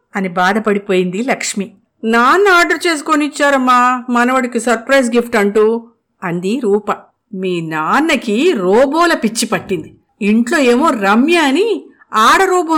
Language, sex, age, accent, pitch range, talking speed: Telugu, female, 50-69, native, 210-315 Hz, 110 wpm